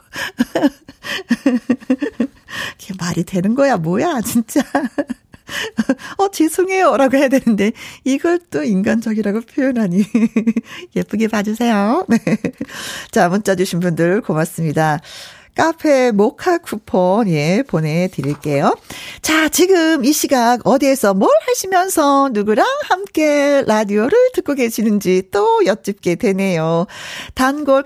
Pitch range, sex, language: 190-290 Hz, female, Korean